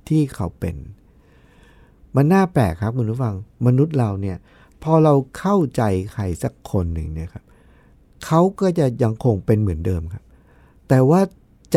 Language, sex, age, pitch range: Thai, male, 60-79, 110-165 Hz